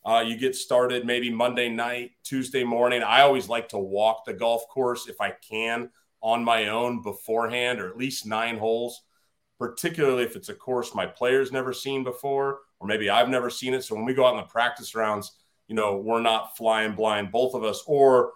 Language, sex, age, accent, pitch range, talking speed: English, male, 30-49, American, 110-125 Hz, 210 wpm